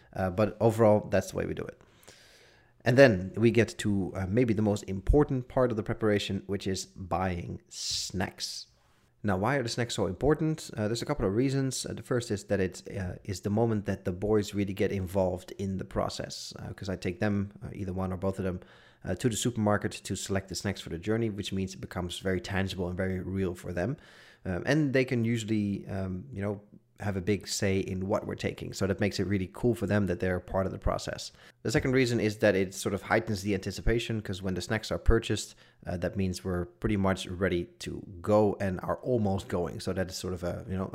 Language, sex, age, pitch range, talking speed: English, male, 30-49, 95-115 Hz, 235 wpm